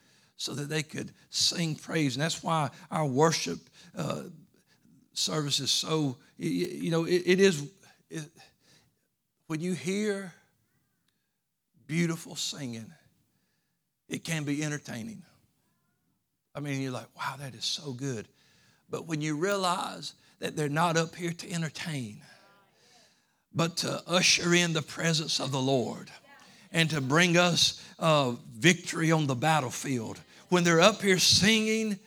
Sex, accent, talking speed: male, American, 140 wpm